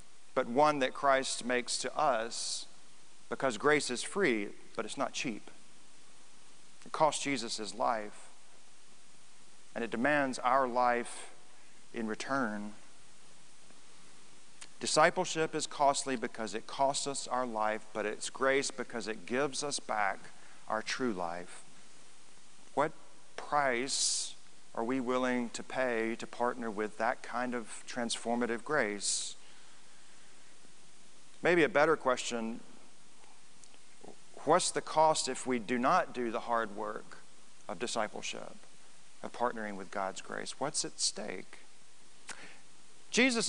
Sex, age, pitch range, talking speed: male, 40-59, 120-155 Hz, 120 wpm